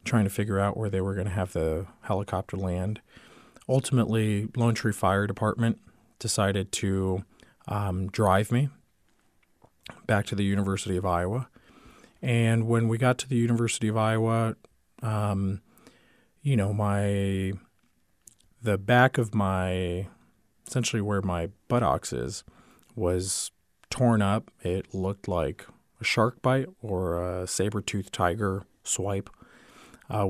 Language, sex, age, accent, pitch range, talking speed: English, male, 40-59, American, 95-115 Hz, 135 wpm